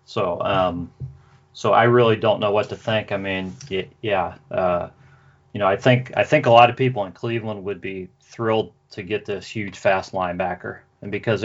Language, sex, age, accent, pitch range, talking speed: English, male, 30-49, American, 105-130 Hz, 200 wpm